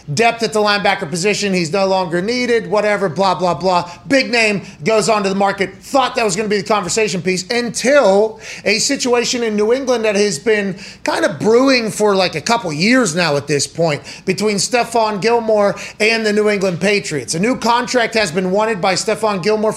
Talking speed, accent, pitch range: 205 wpm, American, 195-230 Hz